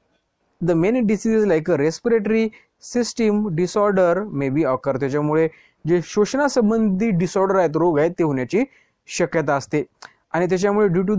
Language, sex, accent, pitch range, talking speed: Marathi, male, native, 160-215 Hz, 135 wpm